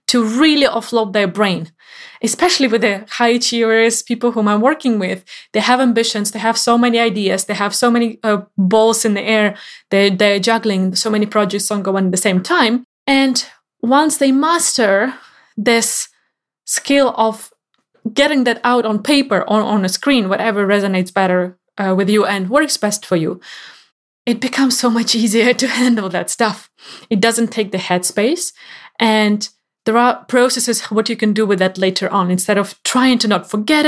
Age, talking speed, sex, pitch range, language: 20-39, 180 wpm, female, 200-245 Hz, English